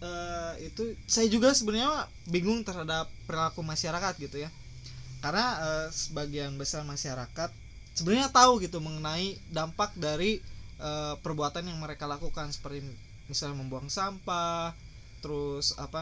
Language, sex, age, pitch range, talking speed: Indonesian, male, 20-39, 140-175 Hz, 125 wpm